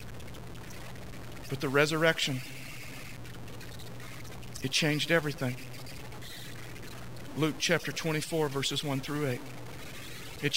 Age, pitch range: 50-69, 125-155 Hz